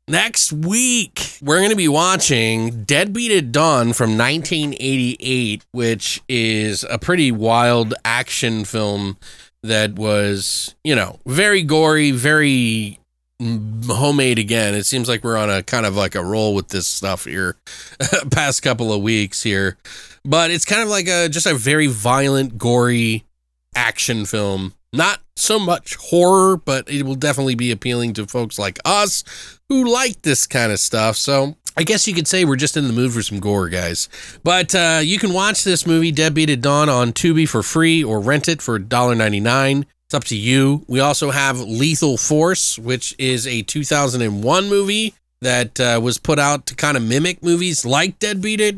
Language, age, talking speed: English, 20-39, 175 wpm